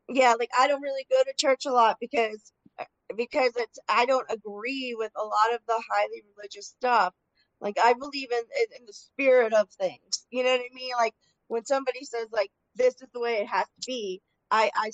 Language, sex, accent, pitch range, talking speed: English, female, American, 210-260 Hz, 215 wpm